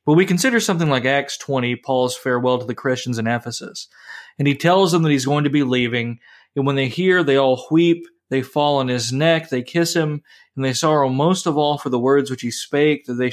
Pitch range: 125-150 Hz